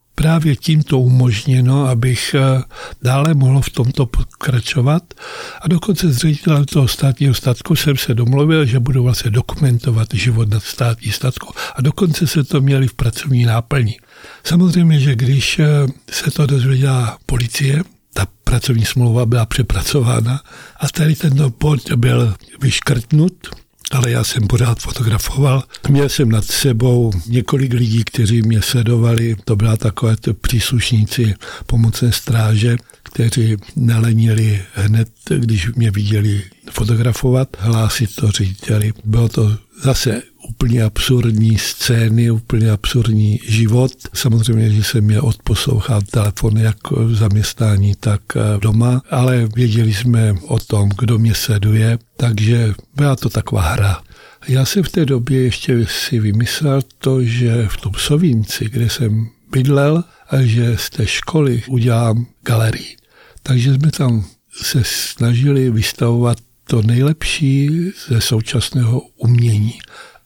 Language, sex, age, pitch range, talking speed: Slovak, male, 60-79, 110-135 Hz, 130 wpm